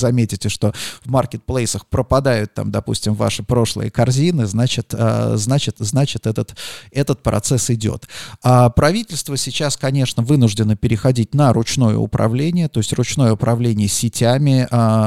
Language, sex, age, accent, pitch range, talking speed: Russian, male, 30-49, native, 110-135 Hz, 110 wpm